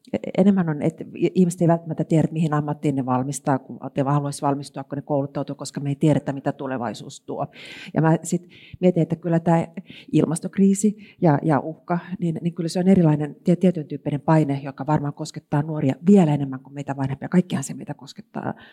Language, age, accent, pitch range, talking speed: Finnish, 40-59, native, 140-170 Hz, 185 wpm